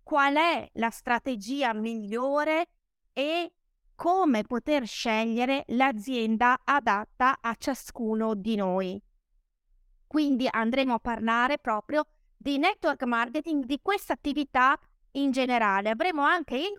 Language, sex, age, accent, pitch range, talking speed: Italian, female, 30-49, native, 225-295 Hz, 110 wpm